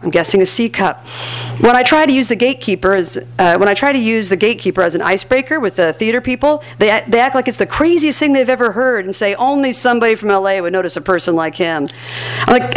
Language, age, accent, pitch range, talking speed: English, 50-69, American, 175-235 Hz, 255 wpm